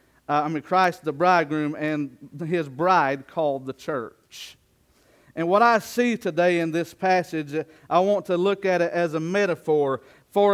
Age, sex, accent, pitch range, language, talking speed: 40-59, male, American, 165-195 Hz, English, 170 wpm